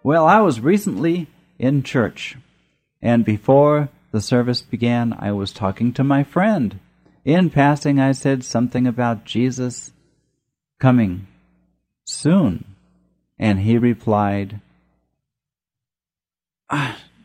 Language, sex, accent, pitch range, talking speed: English, male, American, 105-150 Hz, 105 wpm